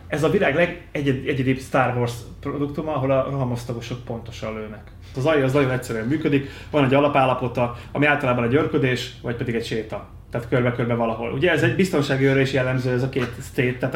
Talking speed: 185 wpm